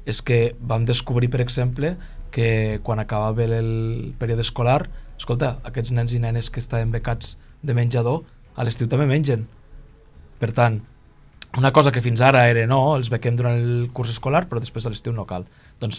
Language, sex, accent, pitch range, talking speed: Spanish, male, Spanish, 110-130 Hz, 180 wpm